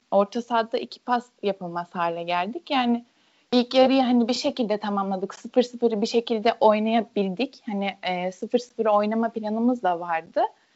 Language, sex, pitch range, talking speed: Turkish, female, 200-240 Hz, 135 wpm